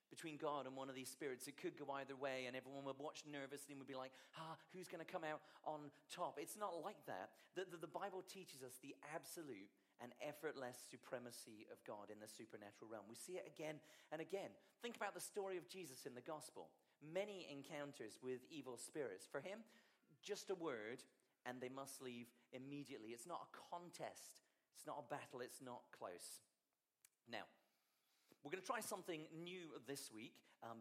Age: 40-59